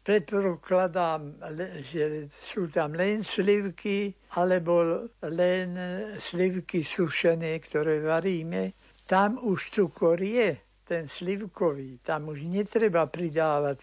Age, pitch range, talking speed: 60-79, 140-185 Hz, 95 wpm